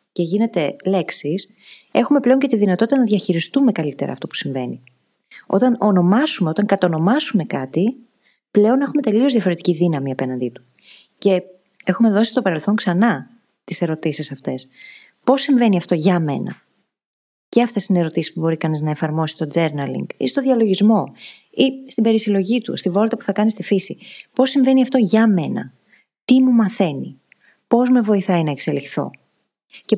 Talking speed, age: 160 wpm, 30-49